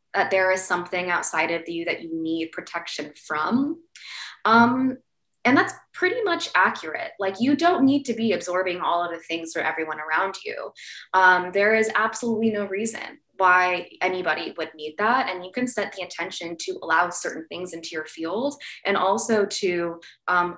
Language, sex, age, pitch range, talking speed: English, female, 20-39, 165-215 Hz, 180 wpm